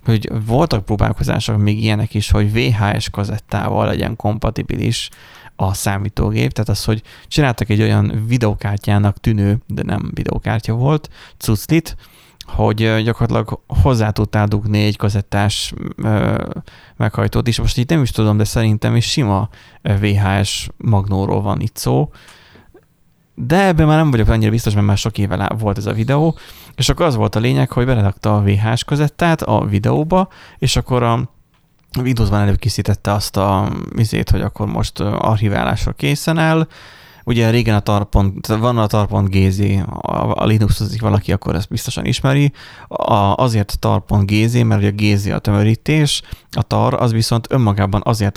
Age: 20-39